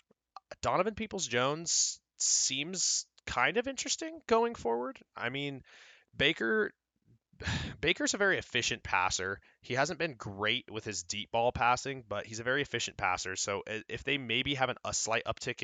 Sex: male